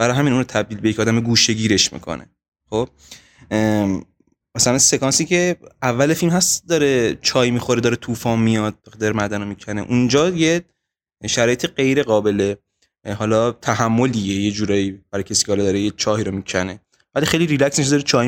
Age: 20-39